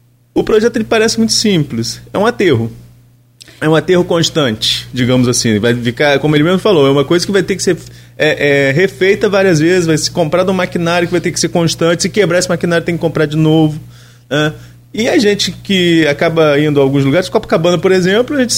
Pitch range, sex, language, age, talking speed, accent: 140-205 Hz, male, Portuguese, 20-39, 225 wpm, Brazilian